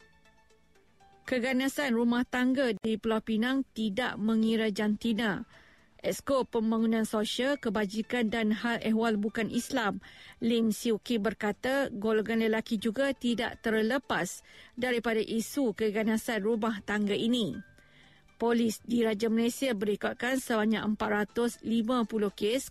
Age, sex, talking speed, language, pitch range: 50-69, female, 110 wpm, Malay, 215-240 Hz